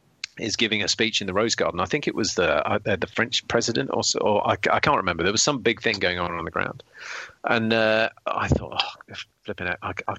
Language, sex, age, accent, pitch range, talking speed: English, male, 40-59, British, 100-120 Hz, 240 wpm